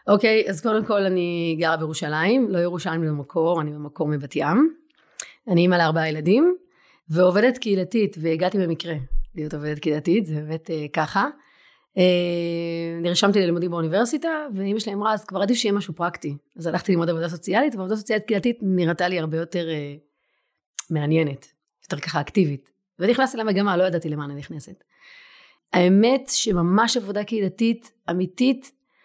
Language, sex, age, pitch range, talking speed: Hebrew, female, 30-49, 165-215 Hz, 140 wpm